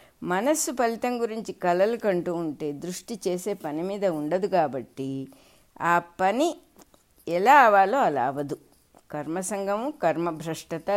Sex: female